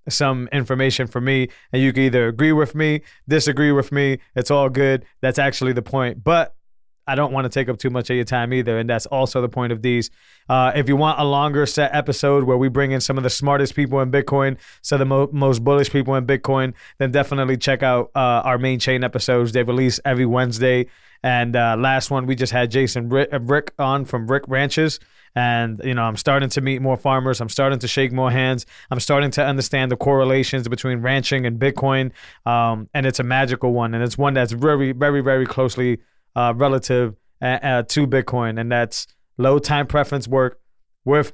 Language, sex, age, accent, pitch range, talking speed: English, male, 20-39, American, 125-140 Hz, 215 wpm